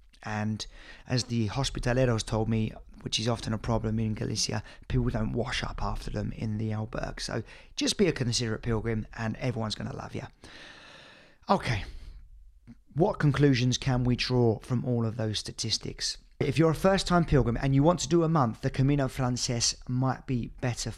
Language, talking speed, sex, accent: English, 185 wpm, male, British